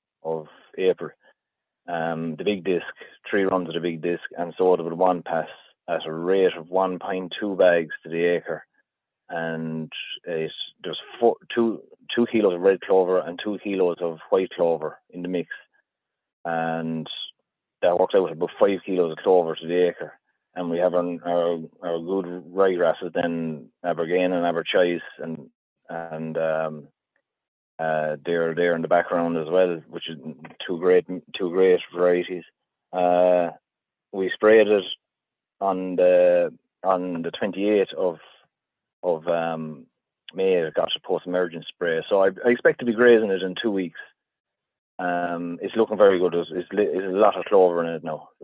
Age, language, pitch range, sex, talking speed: 30-49, English, 85-95 Hz, male, 170 wpm